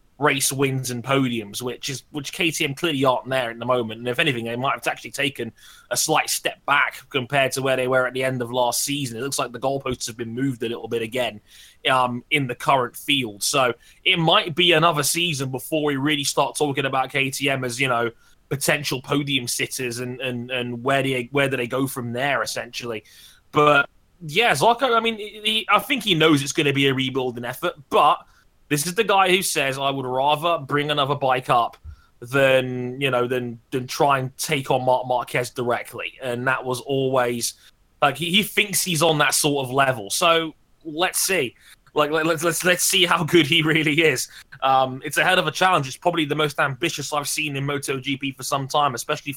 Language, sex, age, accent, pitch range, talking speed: English, male, 20-39, British, 125-155 Hz, 215 wpm